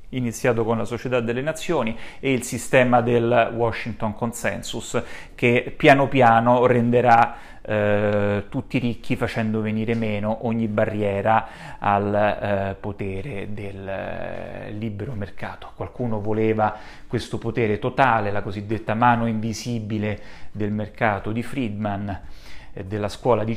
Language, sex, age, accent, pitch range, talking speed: Italian, male, 30-49, native, 105-125 Hz, 120 wpm